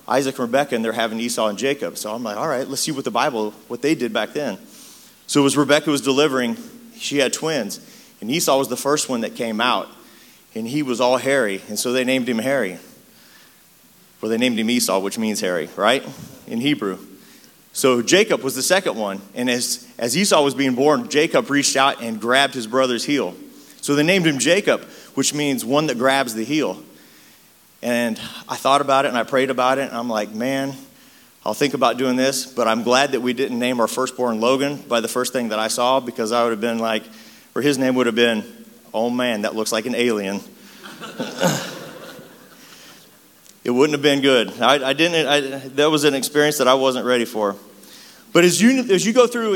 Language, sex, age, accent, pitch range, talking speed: English, male, 30-49, American, 120-145 Hz, 215 wpm